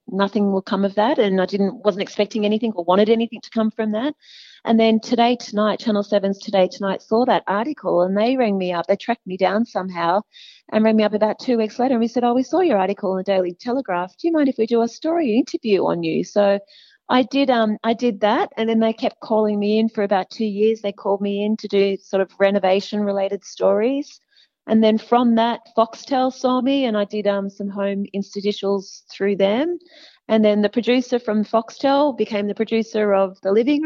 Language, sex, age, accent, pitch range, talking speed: English, female, 30-49, Australian, 195-235 Hz, 225 wpm